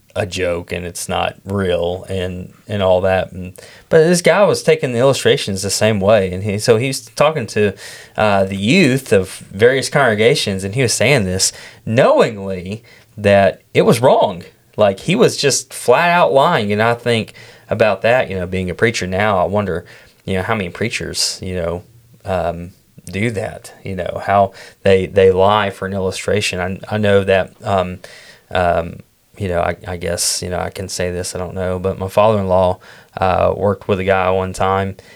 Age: 20-39